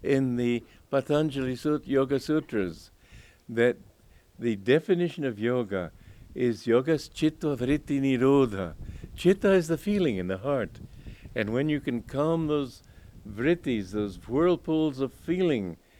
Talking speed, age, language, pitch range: 125 wpm, 60-79, English, 100-135 Hz